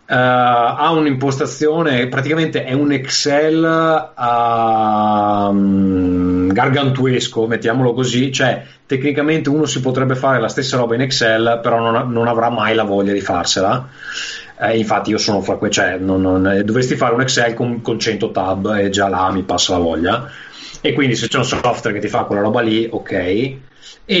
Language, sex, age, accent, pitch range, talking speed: Italian, male, 30-49, native, 105-140 Hz, 165 wpm